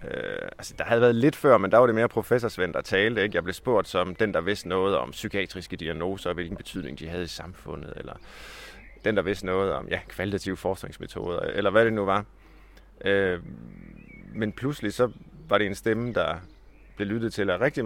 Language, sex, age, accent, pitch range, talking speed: Danish, male, 30-49, native, 90-110 Hz, 210 wpm